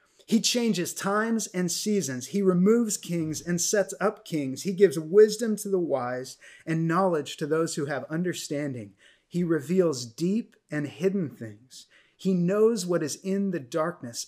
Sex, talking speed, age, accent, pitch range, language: male, 160 wpm, 30-49, American, 140-190 Hz, English